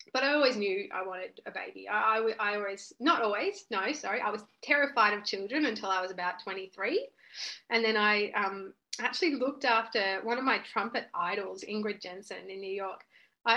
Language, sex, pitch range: English, female, 190-230 Hz